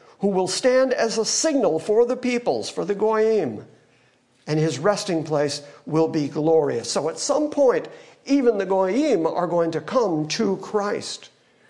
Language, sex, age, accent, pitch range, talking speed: English, male, 60-79, American, 160-220 Hz, 165 wpm